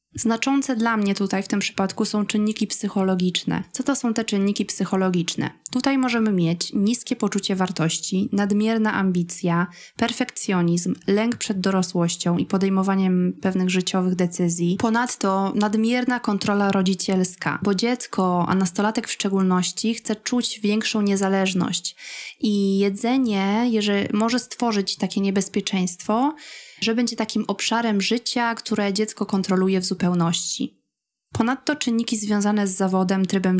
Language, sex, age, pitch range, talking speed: Polish, female, 20-39, 185-220 Hz, 125 wpm